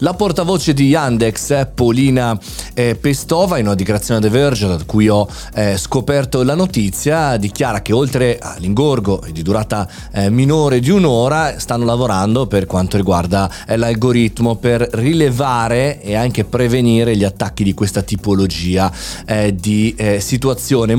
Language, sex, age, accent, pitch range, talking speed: Italian, male, 30-49, native, 100-135 Hz, 130 wpm